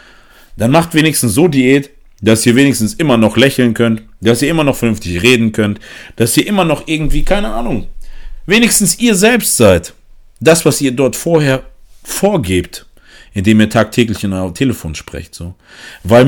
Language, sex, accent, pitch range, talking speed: German, male, German, 100-140 Hz, 165 wpm